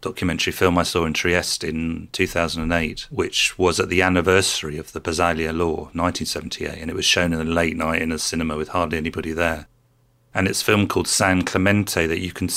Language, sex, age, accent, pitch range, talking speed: English, male, 40-59, British, 85-105 Hz, 205 wpm